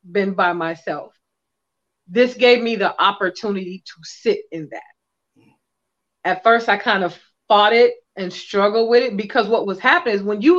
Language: English